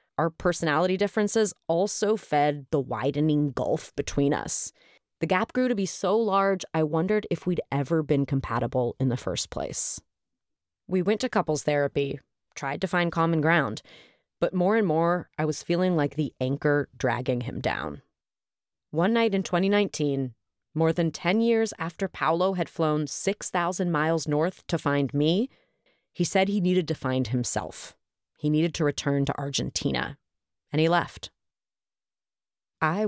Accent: American